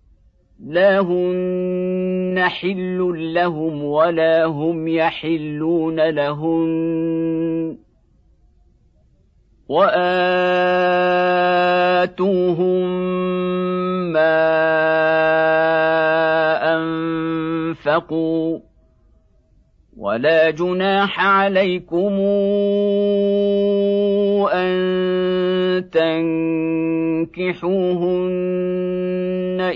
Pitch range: 160-180 Hz